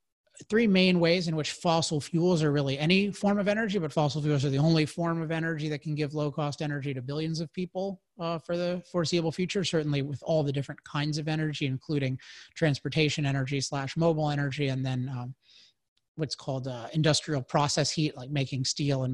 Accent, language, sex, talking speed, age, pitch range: American, English, male, 200 wpm, 30-49, 140-170 Hz